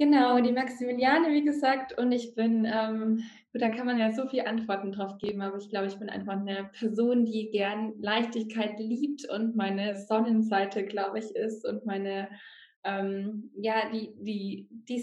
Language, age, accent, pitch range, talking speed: German, 20-39, German, 195-220 Hz, 170 wpm